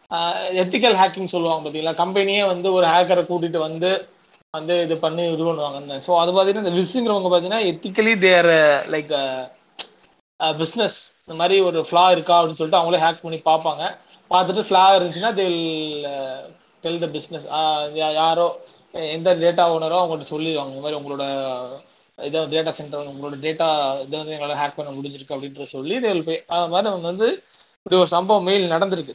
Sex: male